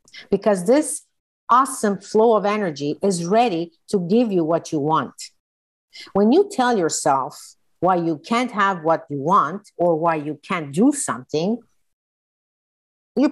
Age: 50-69